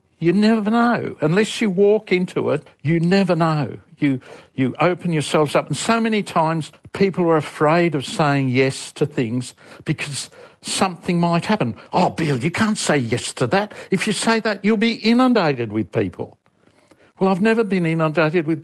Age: 60-79